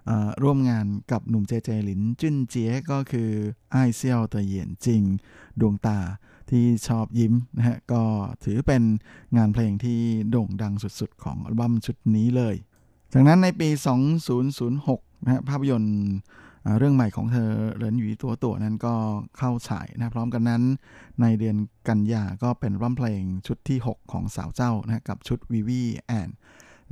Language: Thai